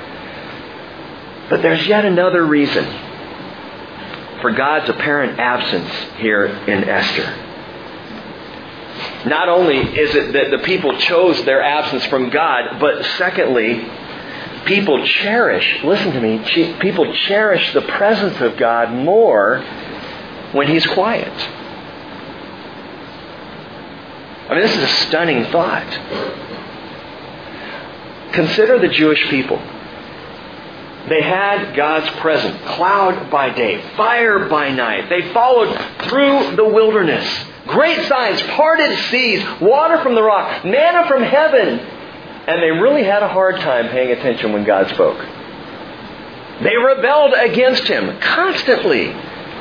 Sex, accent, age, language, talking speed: male, American, 50-69, English, 115 wpm